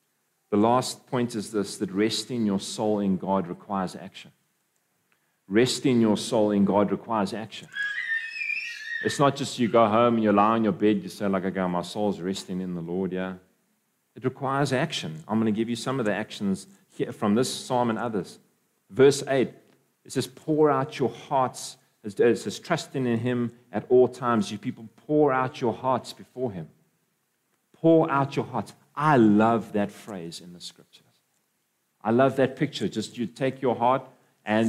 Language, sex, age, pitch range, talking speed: English, male, 40-59, 105-130 Hz, 185 wpm